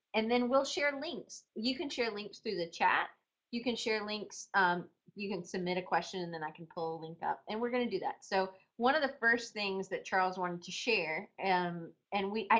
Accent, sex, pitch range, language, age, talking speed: American, female, 175-230 Hz, English, 30-49, 240 wpm